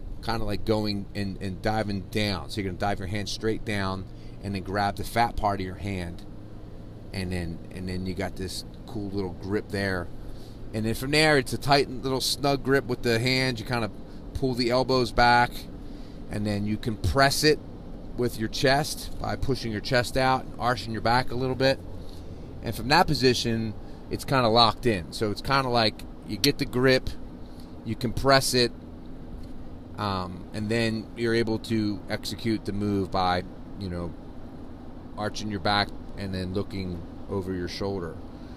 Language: English